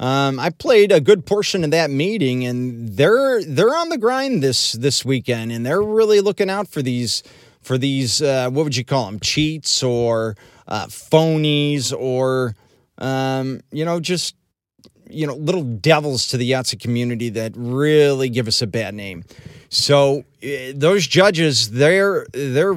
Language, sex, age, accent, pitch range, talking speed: English, male, 30-49, American, 120-155 Hz, 165 wpm